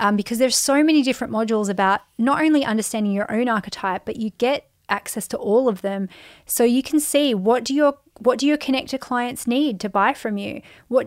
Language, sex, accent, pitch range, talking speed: English, female, Australian, 205-255 Hz, 215 wpm